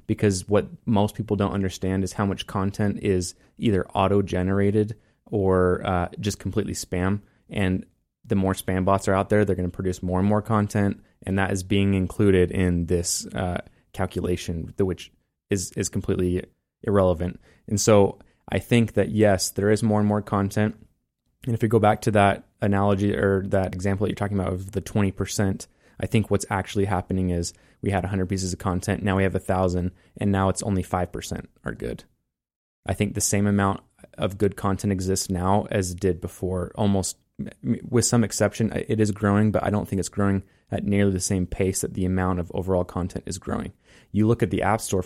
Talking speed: 195 wpm